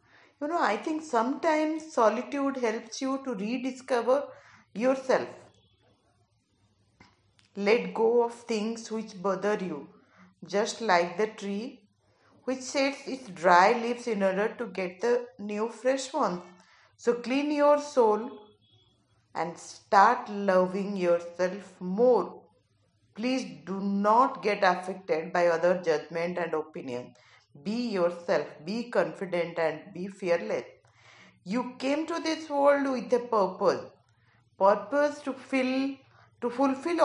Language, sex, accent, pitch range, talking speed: Hindi, female, native, 170-245 Hz, 120 wpm